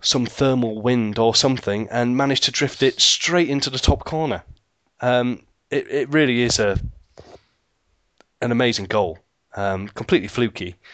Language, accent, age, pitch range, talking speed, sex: English, British, 30-49, 100-125 Hz, 150 wpm, male